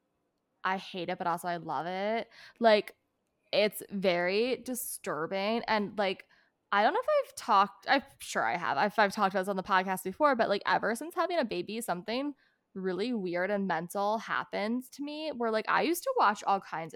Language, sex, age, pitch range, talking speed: English, female, 10-29, 195-250 Hz, 200 wpm